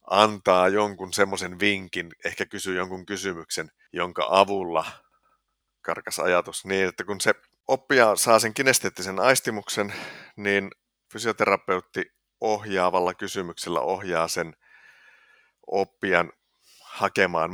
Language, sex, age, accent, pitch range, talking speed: Finnish, male, 50-69, native, 90-105 Hz, 100 wpm